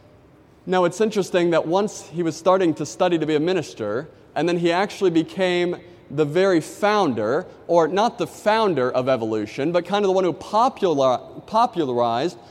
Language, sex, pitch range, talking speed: English, male, 175-210 Hz, 170 wpm